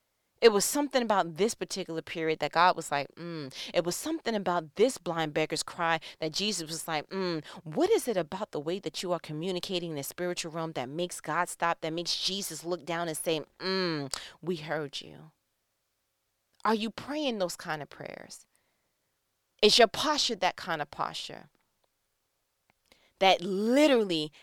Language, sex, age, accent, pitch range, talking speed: English, female, 30-49, American, 155-195 Hz, 170 wpm